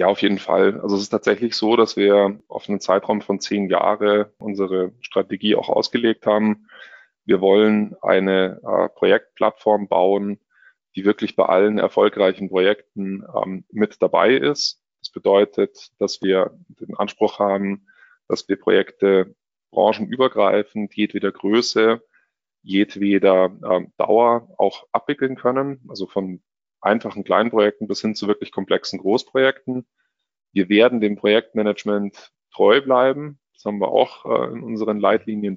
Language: German